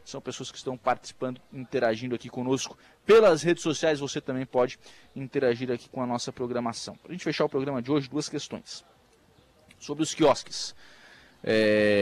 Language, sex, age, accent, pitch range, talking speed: Portuguese, male, 20-39, Brazilian, 135-185 Hz, 170 wpm